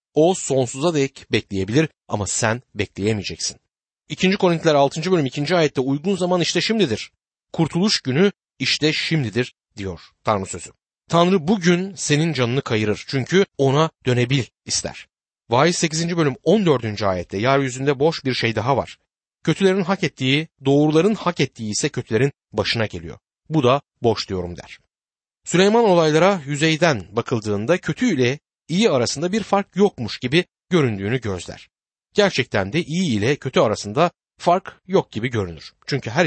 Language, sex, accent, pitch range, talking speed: Turkish, male, native, 115-170 Hz, 140 wpm